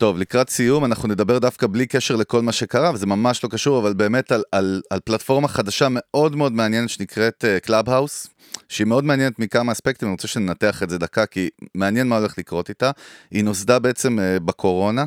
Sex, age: male, 30-49